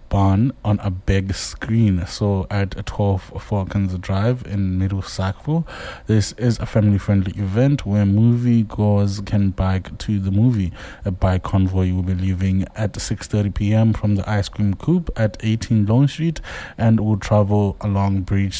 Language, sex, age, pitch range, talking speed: English, male, 20-39, 95-115 Hz, 160 wpm